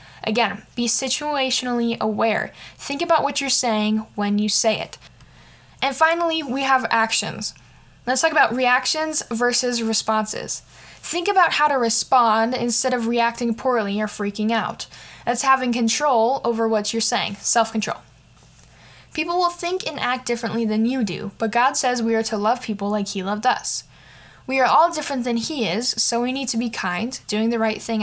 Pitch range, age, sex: 215-265 Hz, 10-29, female